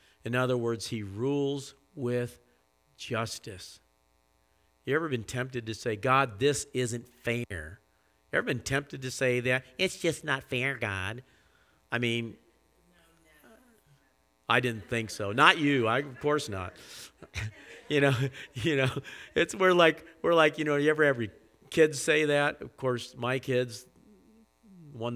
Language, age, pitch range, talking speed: English, 50-69, 100-135 Hz, 150 wpm